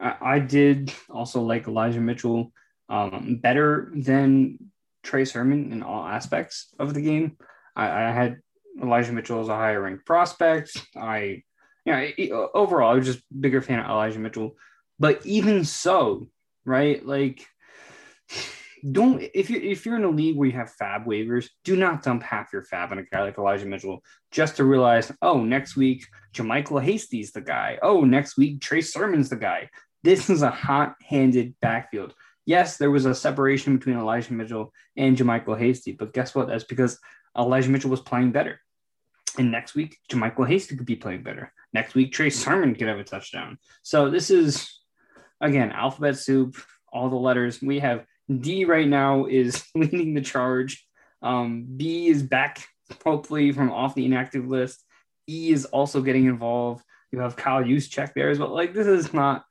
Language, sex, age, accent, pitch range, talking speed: English, male, 20-39, American, 120-145 Hz, 175 wpm